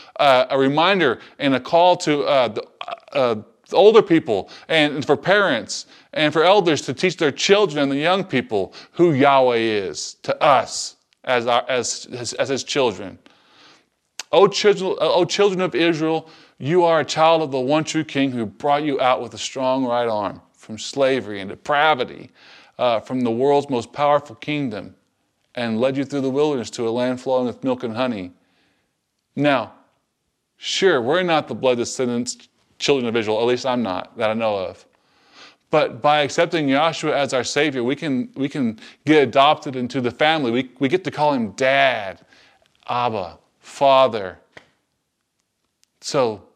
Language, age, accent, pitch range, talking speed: English, 20-39, American, 120-155 Hz, 170 wpm